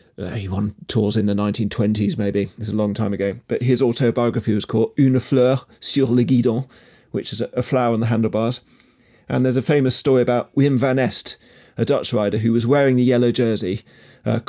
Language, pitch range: English, 115-135 Hz